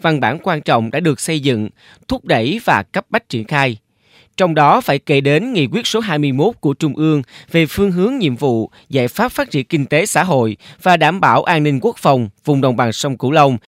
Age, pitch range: 20-39, 130-170 Hz